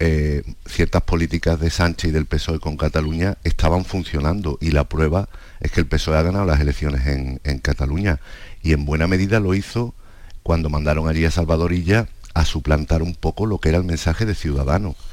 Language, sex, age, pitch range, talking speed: Spanish, male, 50-69, 75-90 Hz, 195 wpm